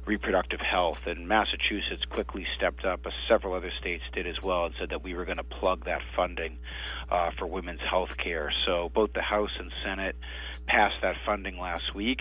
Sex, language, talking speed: male, English, 195 wpm